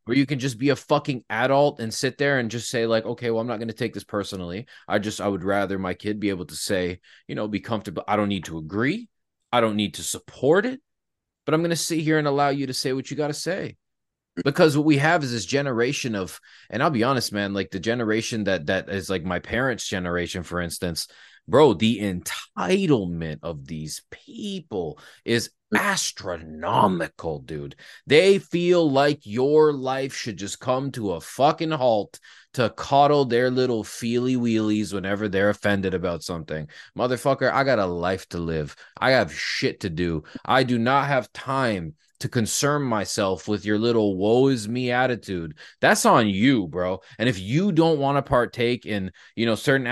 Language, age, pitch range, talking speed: English, 20-39, 100-140 Hz, 200 wpm